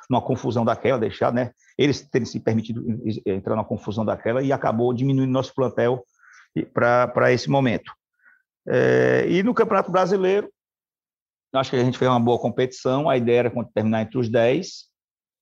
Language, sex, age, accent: Portuguese, male, 50-69, Brazilian